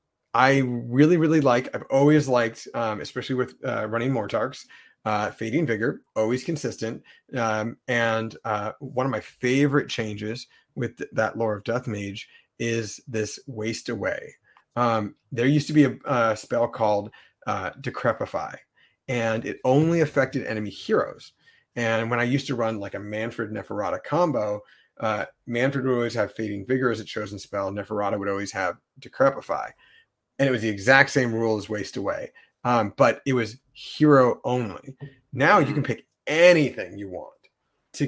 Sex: male